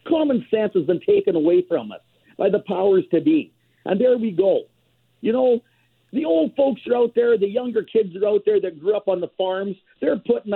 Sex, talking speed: male, 220 wpm